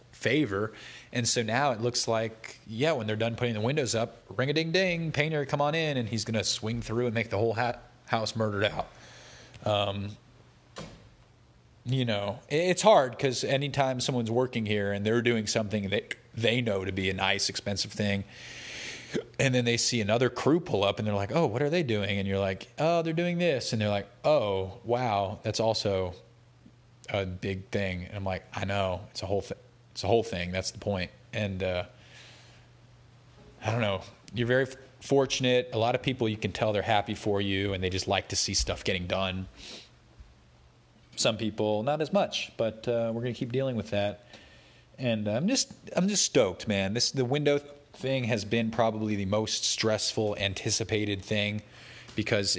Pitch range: 100-125 Hz